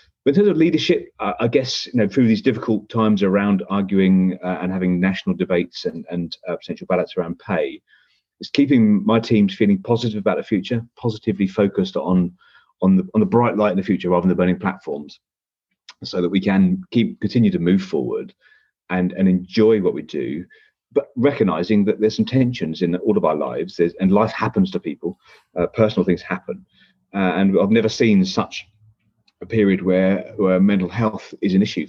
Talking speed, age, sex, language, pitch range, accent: 200 wpm, 40-59, male, English, 90-120 Hz, British